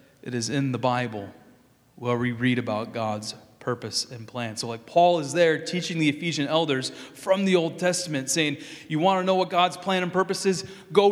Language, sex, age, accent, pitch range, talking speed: English, male, 30-49, American, 110-150 Hz, 205 wpm